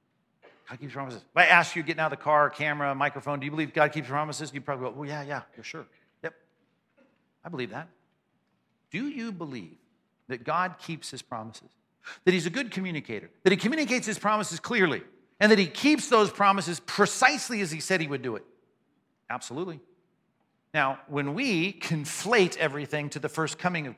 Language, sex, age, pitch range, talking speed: English, male, 50-69, 145-195 Hz, 195 wpm